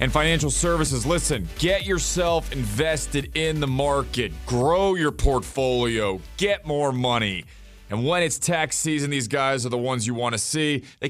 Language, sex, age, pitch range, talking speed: English, male, 30-49, 135-180 Hz, 170 wpm